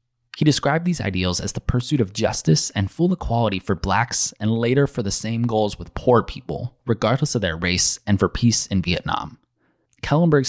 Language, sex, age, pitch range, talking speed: English, male, 20-39, 95-120 Hz, 190 wpm